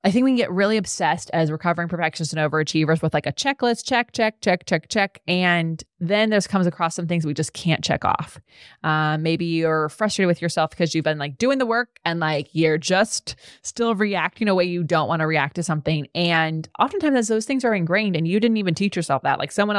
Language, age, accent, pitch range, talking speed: English, 20-39, American, 155-205 Hz, 230 wpm